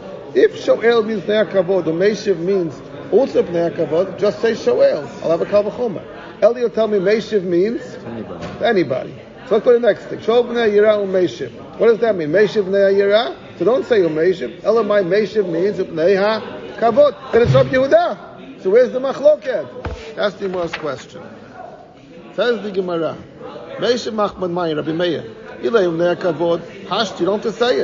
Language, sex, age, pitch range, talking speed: English, male, 50-69, 185-235 Hz, 155 wpm